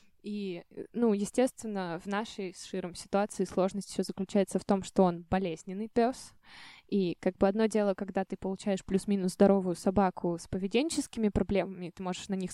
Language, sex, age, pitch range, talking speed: Russian, female, 10-29, 190-230 Hz, 165 wpm